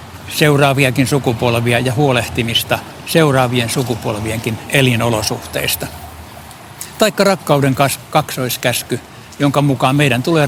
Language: Finnish